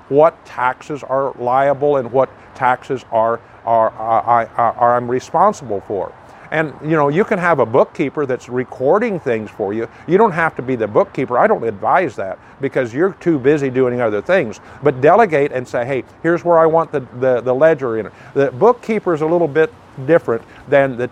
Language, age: English, 50-69